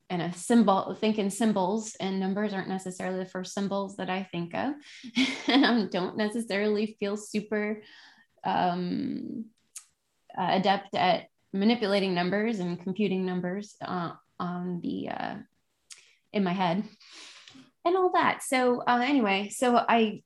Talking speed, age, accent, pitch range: 135 wpm, 20-39, American, 190-245 Hz